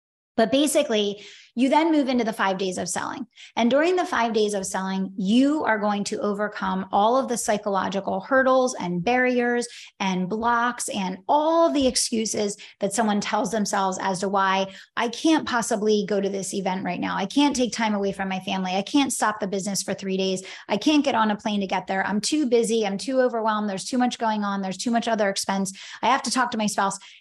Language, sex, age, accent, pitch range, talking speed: English, female, 20-39, American, 195-255 Hz, 220 wpm